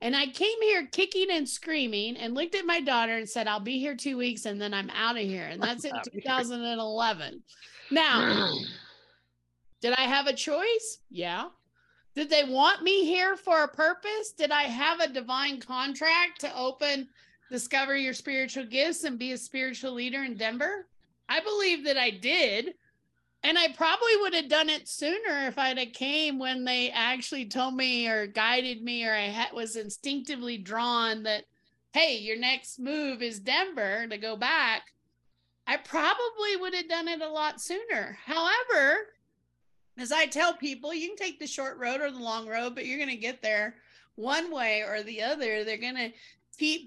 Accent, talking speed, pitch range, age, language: American, 185 wpm, 230-310 Hz, 30-49, English